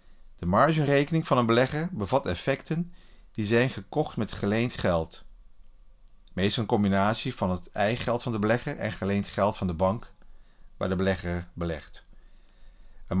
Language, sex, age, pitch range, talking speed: Dutch, male, 50-69, 95-125 Hz, 155 wpm